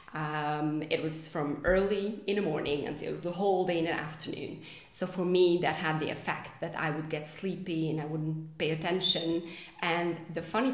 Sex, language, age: female, English, 20-39